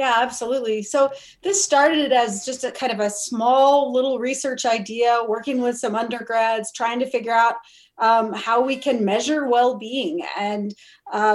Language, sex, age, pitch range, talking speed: English, female, 30-49, 220-260 Hz, 165 wpm